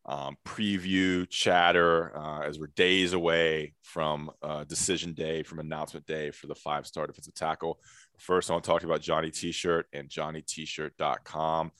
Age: 20-39